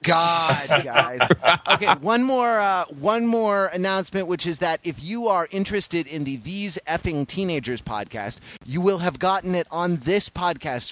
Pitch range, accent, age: 130-170 Hz, American, 30-49